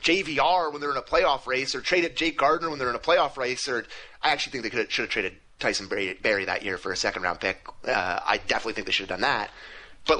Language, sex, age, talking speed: English, male, 30-49, 260 wpm